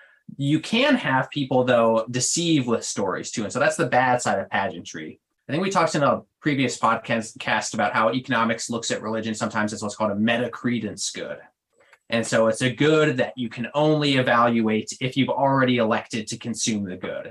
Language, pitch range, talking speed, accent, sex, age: English, 110-140 Hz, 200 wpm, American, male, 20-39